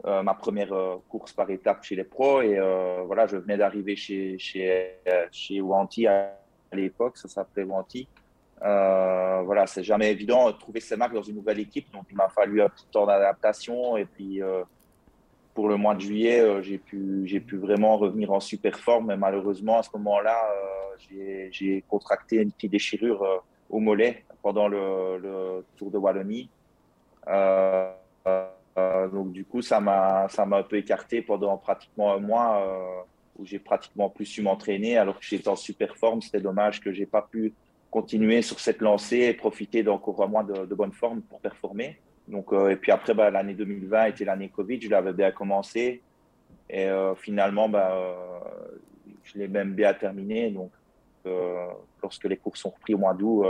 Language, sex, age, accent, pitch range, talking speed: French, male, 30-49, French, 95-105 Hz, 190 wpm